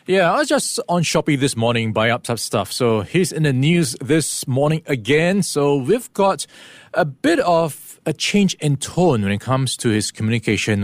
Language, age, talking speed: English, 20-39, 195 wpm